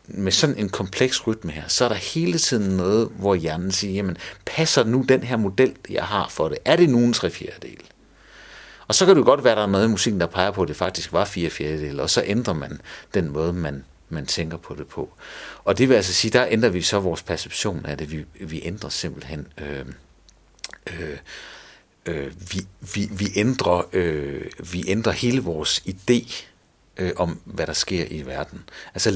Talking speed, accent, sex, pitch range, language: 205 wpm, native, male, 85-120 Hz, Danish